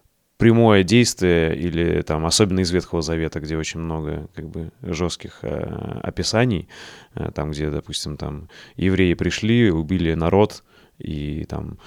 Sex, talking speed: male, 135 wpm